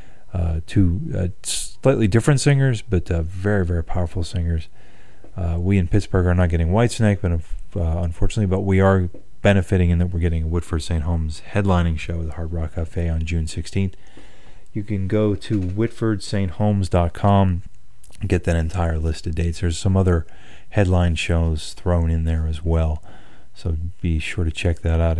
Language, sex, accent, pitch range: English, male, American, 80-95 Hz